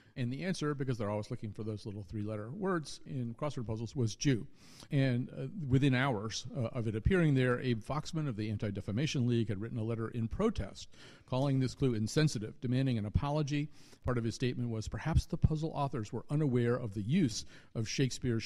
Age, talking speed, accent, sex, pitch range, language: 50-69, 200 wpm, American, male, 110-140 Hz, English